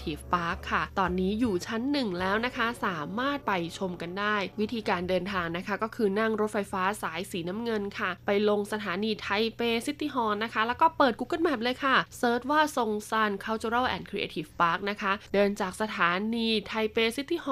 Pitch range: 180-225 Hz